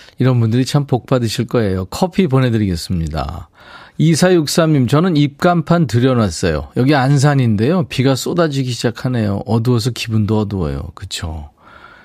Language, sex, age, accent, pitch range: Korean, male, 40-59, native, 105-155 Hz